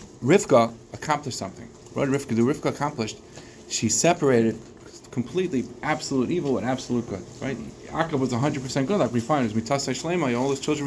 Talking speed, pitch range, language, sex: 165 wpm, 115-155 Hz, English, male